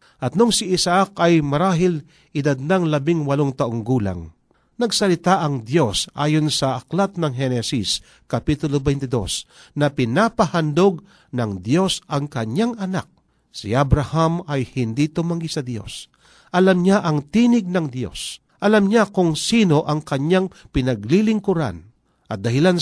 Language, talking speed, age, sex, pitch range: Filipino, 135 wpm, 50-69, male, 125-180 Hz